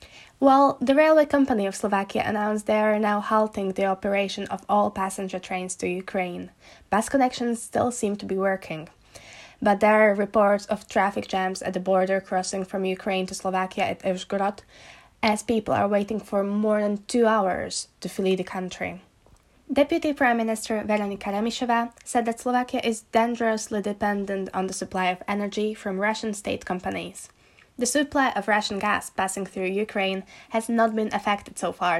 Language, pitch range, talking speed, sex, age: Slovak, 195-240 Hz, 170 wpm, female, 10-29